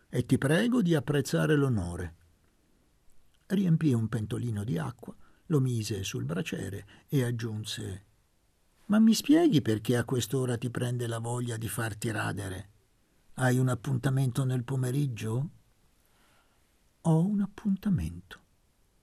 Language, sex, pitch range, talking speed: Italian, male, 95-125 Hz, 120 wpm